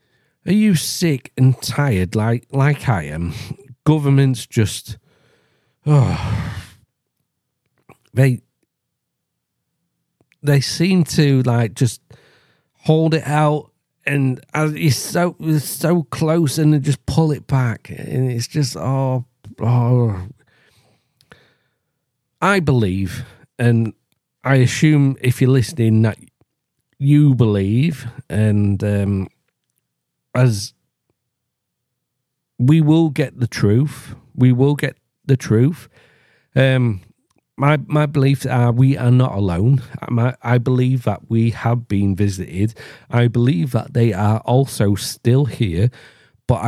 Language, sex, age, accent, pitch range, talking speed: English, male, 40-59, British, 115-145 Hz, 115 wpm